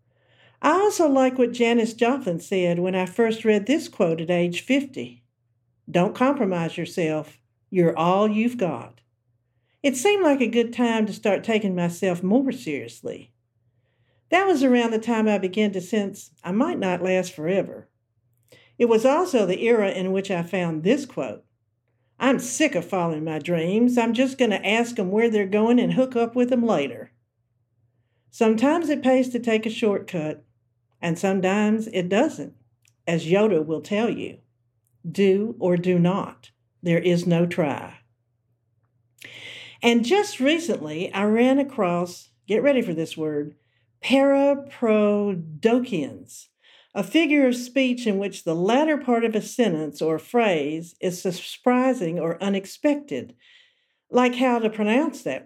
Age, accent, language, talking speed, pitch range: 50-69, American, English, 150 wpm, 160-245 Hz